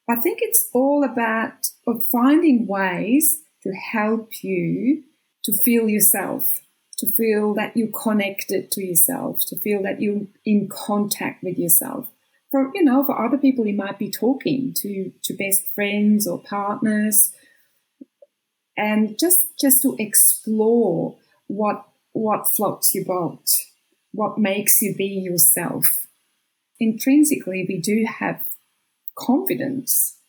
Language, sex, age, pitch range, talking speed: English, female, 30-49, 195-255 Hz, 125 wpm